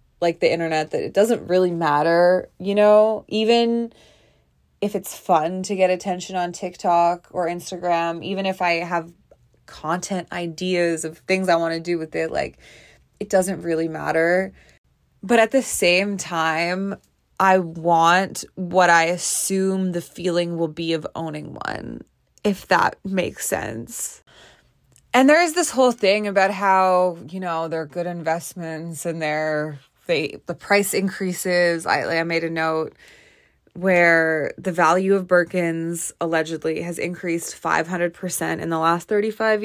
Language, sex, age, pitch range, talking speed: English, female, 20-39, 165-190 Hz, 150 wpm